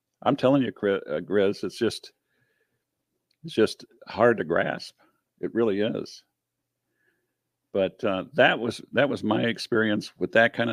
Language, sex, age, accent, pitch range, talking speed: English, male, 50-69, American, 100-120 Hz, 145 wpm